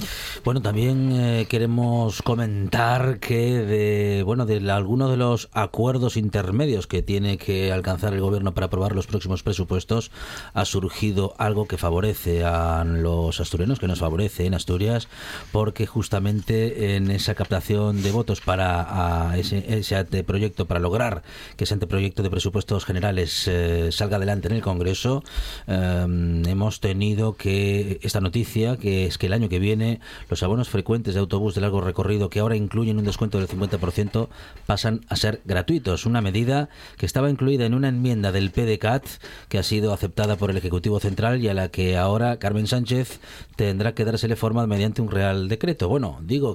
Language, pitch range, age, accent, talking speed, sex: Spanish, 95-115 Hz, 40-59, Spanish, 170 wpm, male